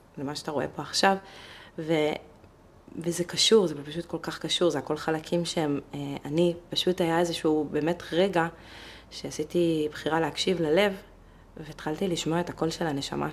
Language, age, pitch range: Hebrew, 20-39, 150-185 Hz